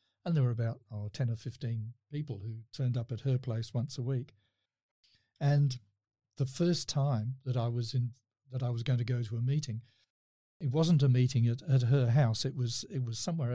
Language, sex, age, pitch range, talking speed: English, male, 50-69, 115-135 Hz, 215 wpm